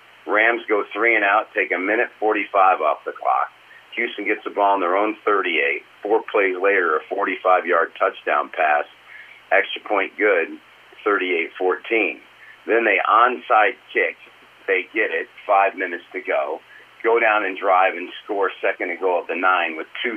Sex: male